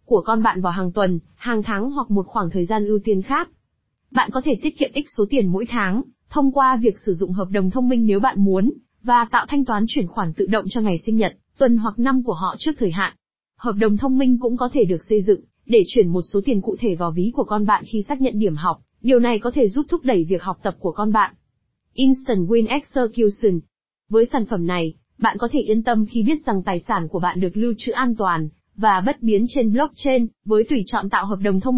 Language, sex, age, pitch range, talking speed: Vietnamese, female, 20-39, 195-250 Hz, 255 wpm